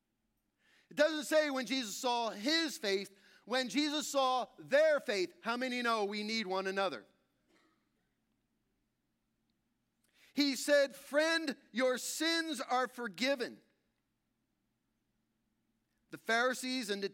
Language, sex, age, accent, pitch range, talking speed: English, male, 40-59, American, 220-285 Hz, 110 wpm